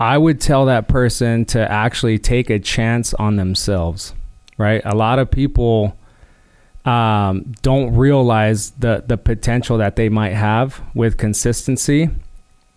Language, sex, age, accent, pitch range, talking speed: English, male, 20-39, American, 105-125 Hz, 135 wpm